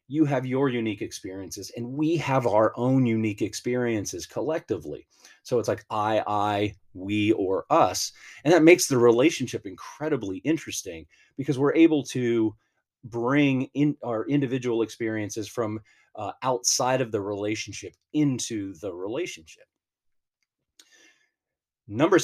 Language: English